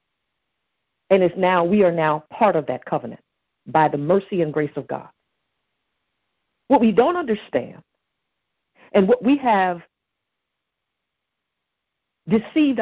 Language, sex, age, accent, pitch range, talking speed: English, female, 50-69, American, 170-230 Hz, 120 wpm